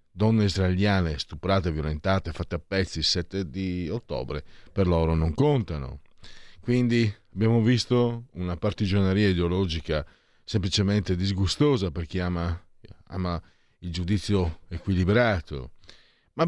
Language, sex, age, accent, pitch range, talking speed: Italian, male, 50-69, native, 85-105 Hz, 115 wpm